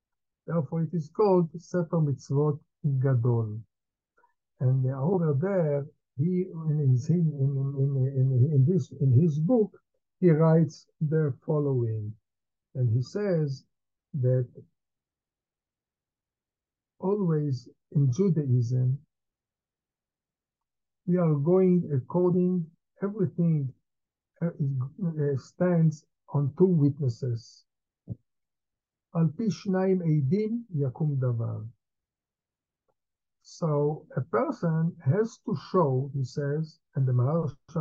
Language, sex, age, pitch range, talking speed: English, male, 60-79, 130-175 Hz, 70 wpm